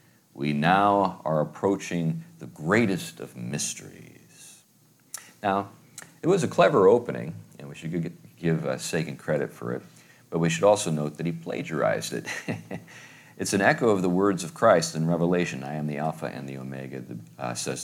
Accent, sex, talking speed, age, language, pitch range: American, male, 170 wpm, 50-69, English, 65-85 Hz